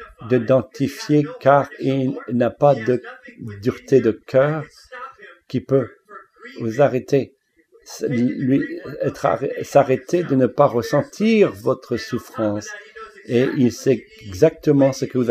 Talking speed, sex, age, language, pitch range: 120 wpm, male, 50-69, English, 110-140 Hz